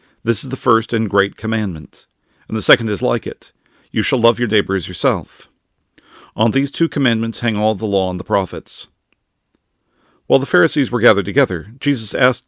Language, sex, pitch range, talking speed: English, male, 100-135 Hz, 190 wpm